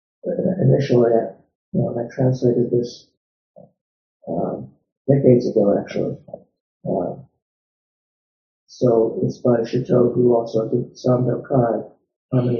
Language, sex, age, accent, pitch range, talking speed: English, male, 60-79, American, 125-155 Hz, 105 wpm